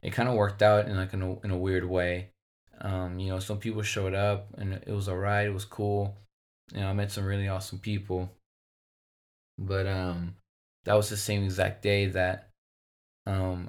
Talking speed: 195 wpm